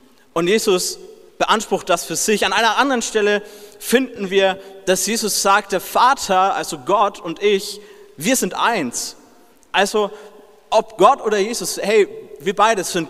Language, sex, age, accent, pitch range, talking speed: German, male, 30-49, German, 170-215 Hz, 145 wpm